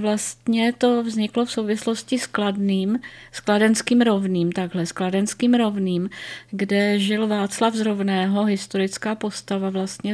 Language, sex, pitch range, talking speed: Czech, female, 195-225 Hz, 125 wpm